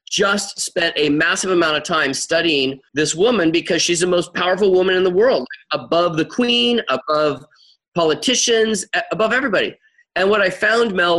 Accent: American